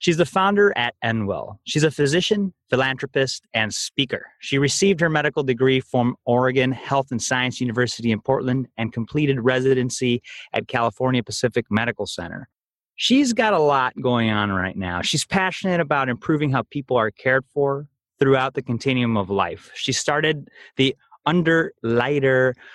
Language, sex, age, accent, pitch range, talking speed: English, male, 30-49, American, 115-145 Hz, 155 wpm